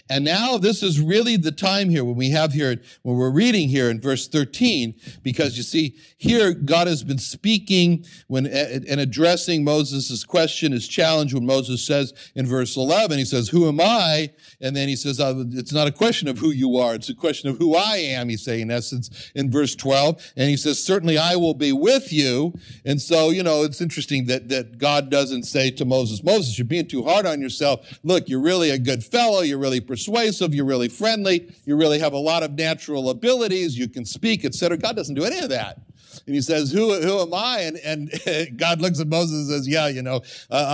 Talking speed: 220 wpm